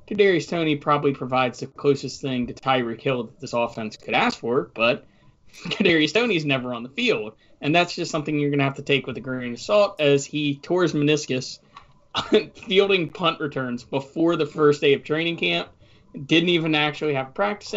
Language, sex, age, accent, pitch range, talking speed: English, male, 20-39, American, 120-155 Hz, 195 wpm